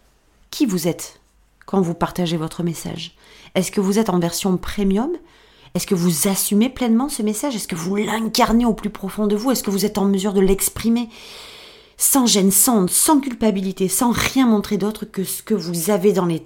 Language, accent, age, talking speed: French, French, 30-49, 200 wpm